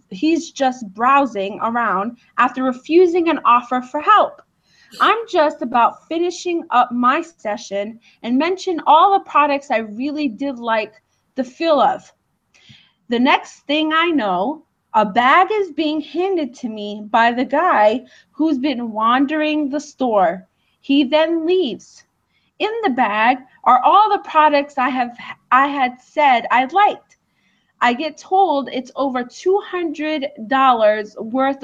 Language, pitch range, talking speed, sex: English, 245-330 Hz, 140 wpm, female